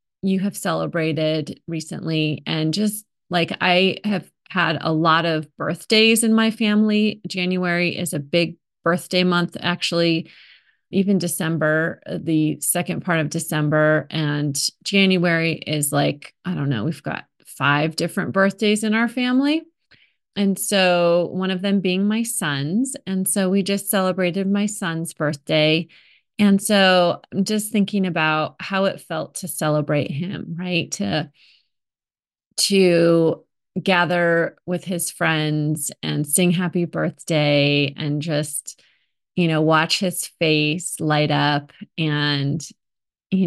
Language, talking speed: English, 135 wpm